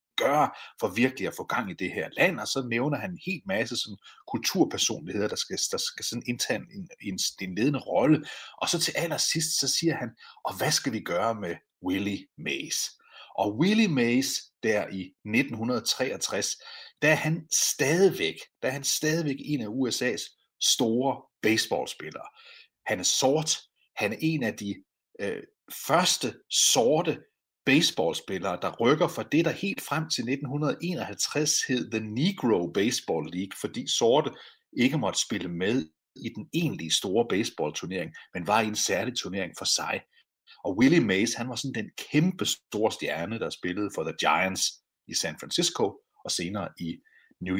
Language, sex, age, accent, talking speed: Danish, male, 30-49, native, 165 wpm